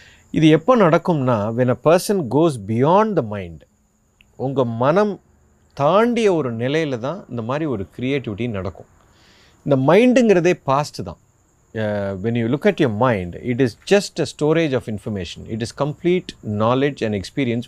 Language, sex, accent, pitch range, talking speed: Tamil, male, native, 105-155 Hz, 145 wpm